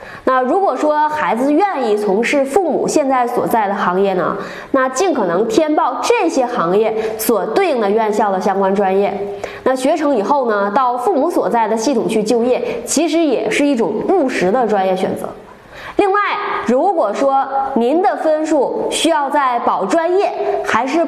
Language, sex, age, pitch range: Chinese, female, 20-39, 225-345 Hz